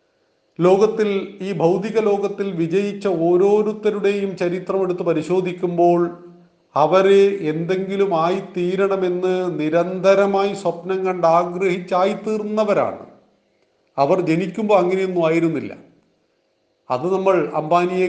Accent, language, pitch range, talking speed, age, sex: native, Malayalam, 160-195 Hz, 75 wpm, 40-59, male